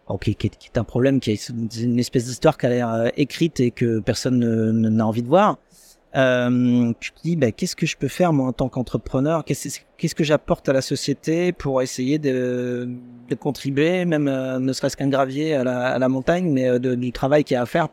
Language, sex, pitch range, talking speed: French, male, 120-150 Hz, 240 wpm